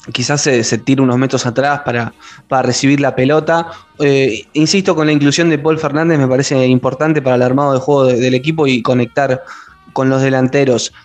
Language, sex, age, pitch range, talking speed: Spanish, male, 20-39, 130-170 Hz, 190 wpm